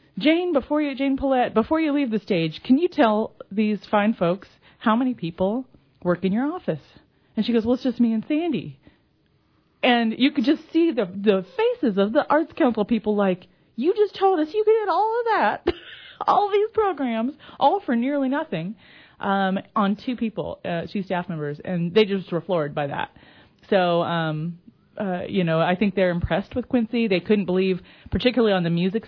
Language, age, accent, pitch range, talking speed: English, 30-49, American, 190-260 Hz, 200 wpm